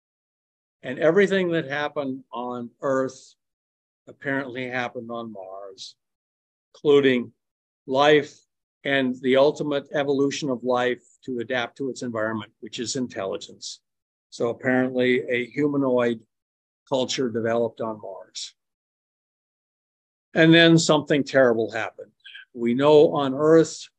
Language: English